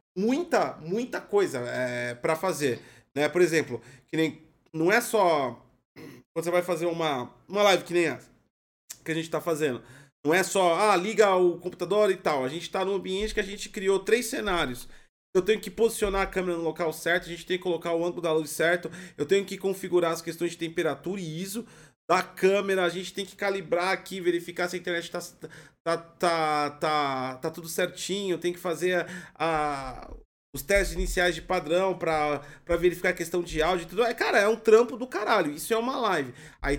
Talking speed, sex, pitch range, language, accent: 210 wpm, male, 150-190 Hz, Portuguese, Brazilian